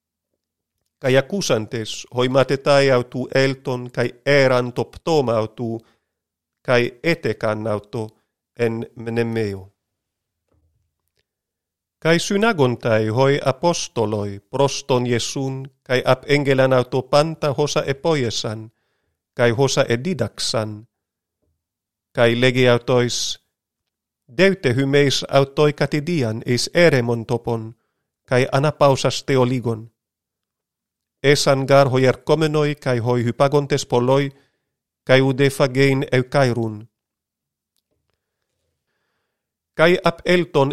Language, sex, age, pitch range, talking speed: Greek, male, 40-59, 115-145 Hz, 75 wpm